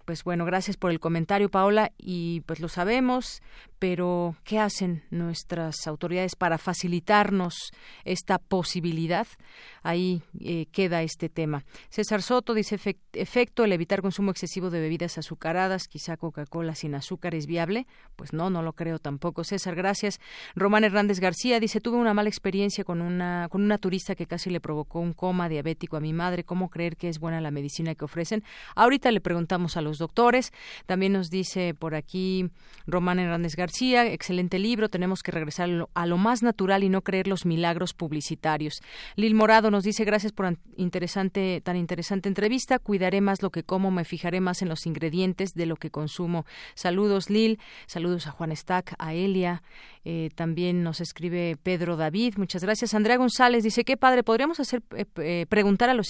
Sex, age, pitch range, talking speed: female, 40-59, 170-200 Hz, 175 wpm